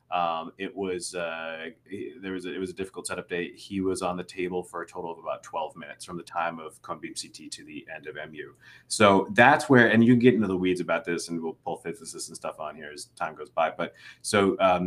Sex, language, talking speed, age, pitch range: male, English, 250 wpm, 30-49, 85-100 Hz